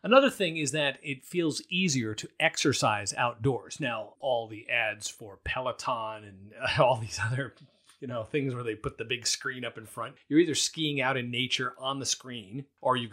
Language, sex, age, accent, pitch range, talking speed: English, male, 40-59, American, 125-170 Hz, 195 wpm